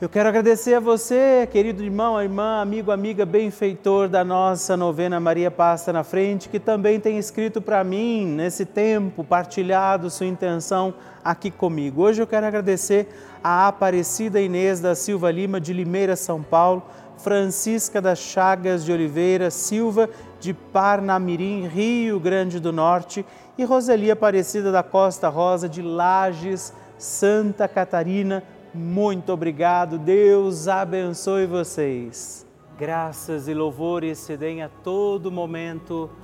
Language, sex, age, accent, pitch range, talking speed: Portuguese, male, 40-59, Brazilian, 170-200 Hz, 130 wpm